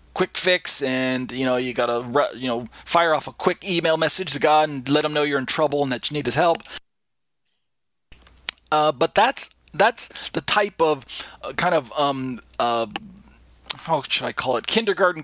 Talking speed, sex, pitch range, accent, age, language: 190 wpm, male, 130-160 Hz, American, 40-59, English